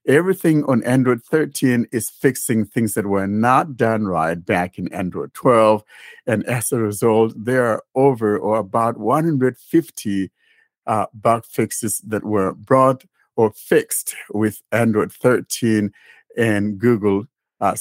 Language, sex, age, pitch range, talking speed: English, male, 60-79, 100-125 Hz, 135 wpm